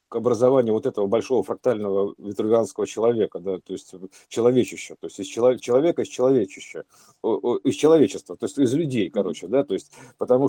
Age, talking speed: 50-69, 165 wpm